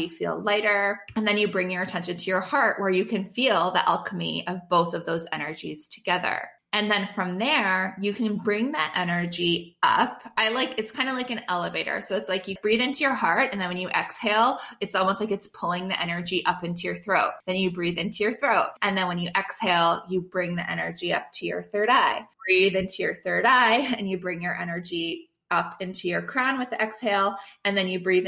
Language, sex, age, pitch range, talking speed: English, female, 20-39, 180-220 Hz, 225 wpm